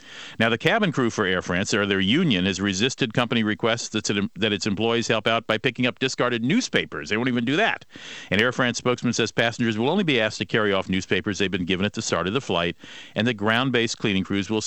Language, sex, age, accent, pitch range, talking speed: English, male, 50-69, American, 105-125 Hz, 235 wpm